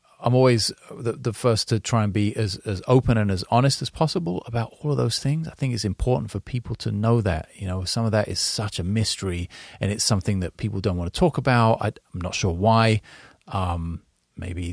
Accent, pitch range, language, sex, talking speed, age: British, 90-120 Hz, English, male, 230 wpm, 30-49